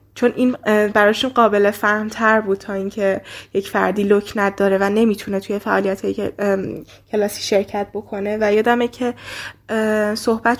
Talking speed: 130 wpm